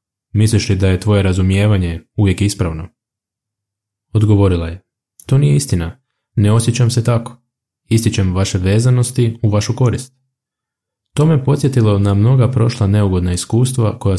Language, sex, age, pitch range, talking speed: Croatian, male, 20-39, 100-120 Hz, 135 wpm